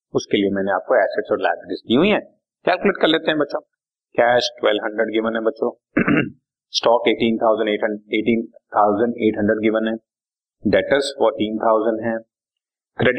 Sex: male